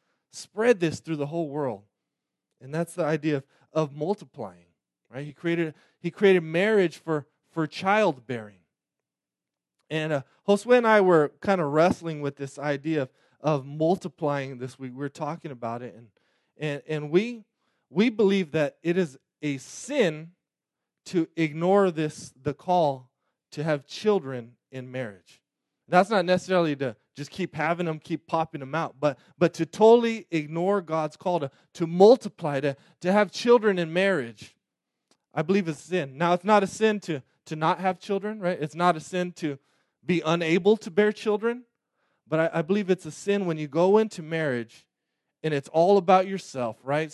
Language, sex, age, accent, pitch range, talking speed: English, male, 20-39, American, 145-185 Hz, 170 wpm